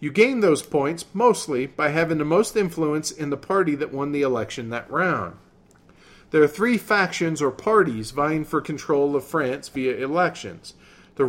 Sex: male